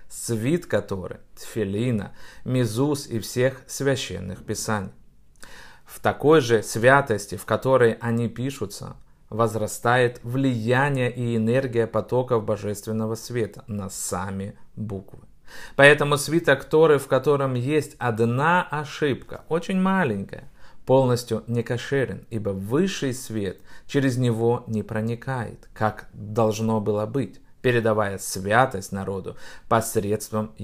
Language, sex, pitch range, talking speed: Russian, male, 110-135 Hz, 105 wpm